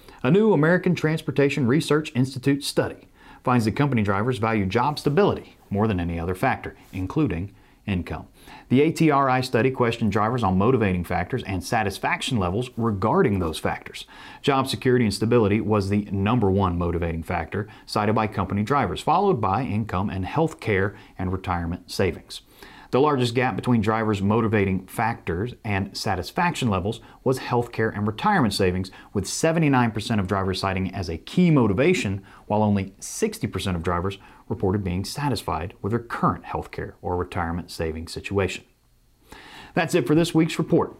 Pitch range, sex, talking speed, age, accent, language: 95-130 Hz, male, 155 wpm, 40-59, American, English